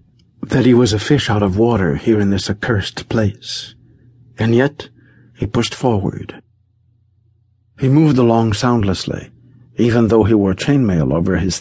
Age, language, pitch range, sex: 60-79, English, 95-120 Hz, male